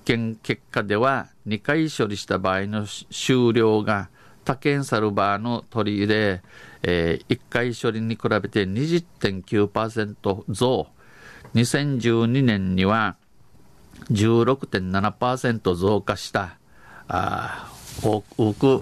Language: Japanese